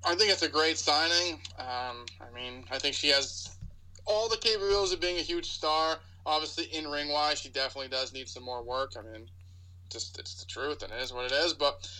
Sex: male